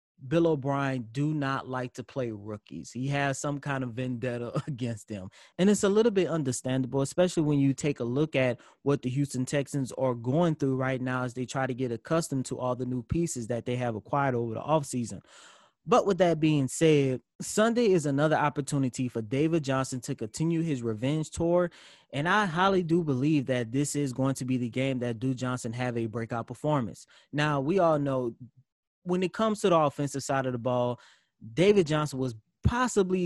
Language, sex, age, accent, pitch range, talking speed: English, male, 20-39, American, 125-155 Hz, 200 wpm